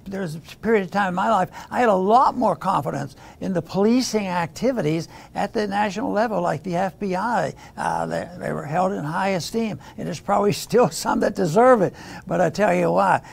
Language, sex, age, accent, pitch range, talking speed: English, male, 60-79, American, 185-235 Hz, 210 wpm